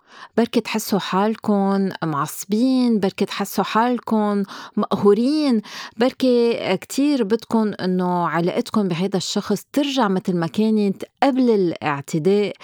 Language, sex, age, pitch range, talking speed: Arabic, female, 30-49, 170-215 Hz, 100 wpm